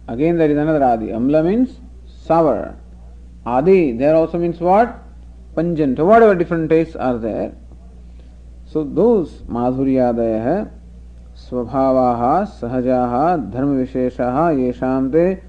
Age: 50-69